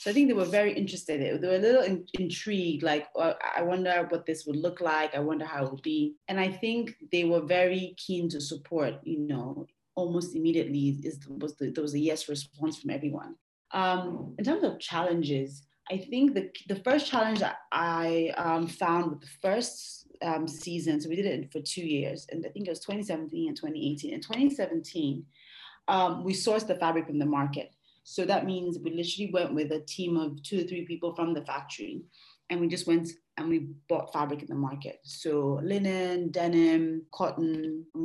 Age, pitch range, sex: 30-49, 150-185 Hz, female